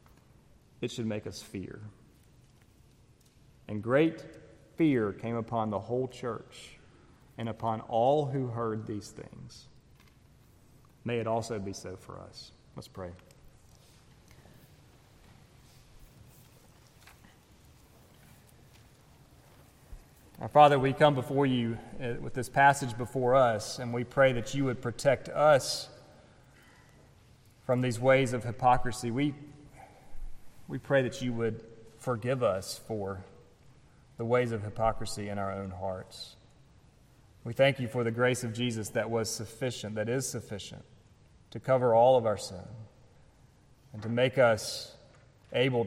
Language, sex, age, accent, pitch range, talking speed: English, male, 30-49, American, 105-125 Hz, 125 wpm